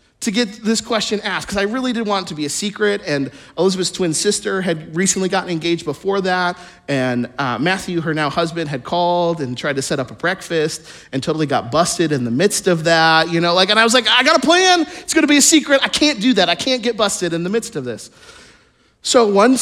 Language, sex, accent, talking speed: English, male, American, 250 wpm